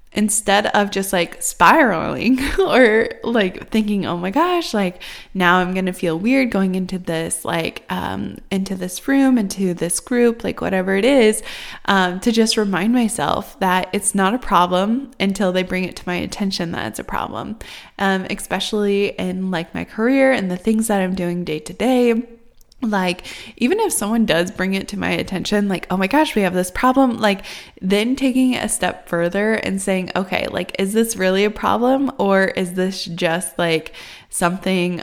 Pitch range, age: 180-225 Hz, 20-39